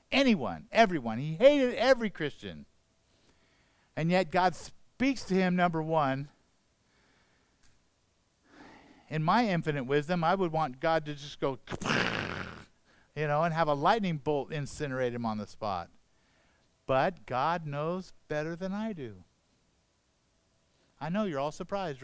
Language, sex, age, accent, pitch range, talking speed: English, male, 50-69, American, 125-185 Hz, 135 wpm